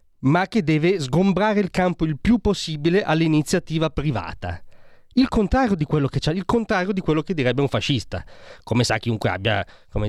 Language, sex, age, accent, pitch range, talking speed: Italian, male, 30-49, native, 120-180 Hz, 175 wpm